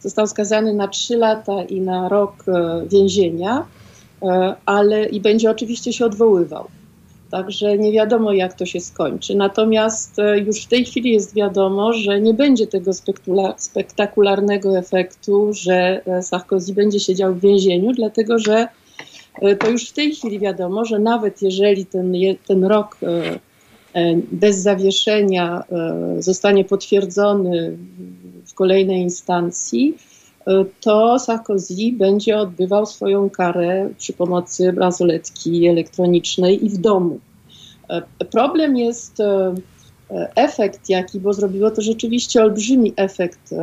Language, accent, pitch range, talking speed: Polish, native, 185-220 Hz, 125 wpm